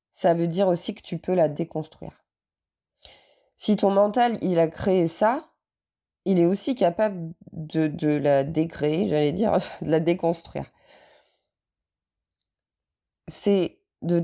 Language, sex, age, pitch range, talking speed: French, female, 20-39, 150-190 Hz, 130 wpm